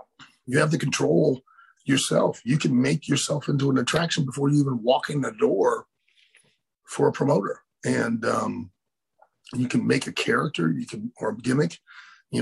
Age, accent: 30-49, American